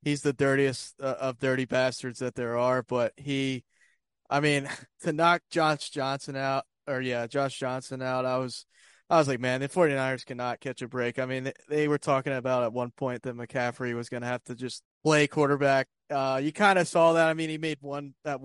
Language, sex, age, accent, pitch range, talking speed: English, male, 20-39, American, 130-150 Hz, 220 wpm